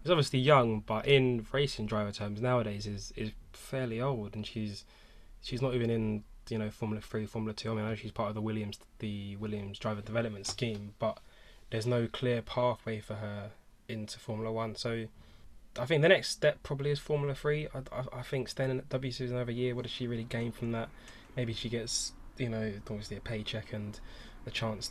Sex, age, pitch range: male, 10-29, 110-125 Hz